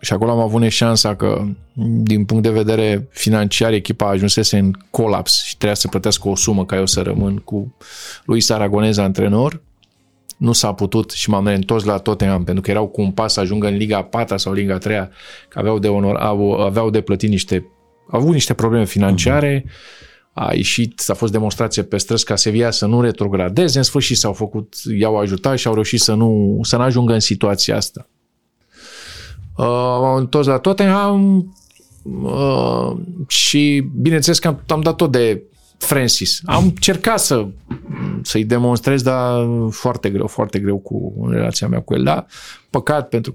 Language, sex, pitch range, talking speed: Romanian, male, 100-120 Hz, 175 wpm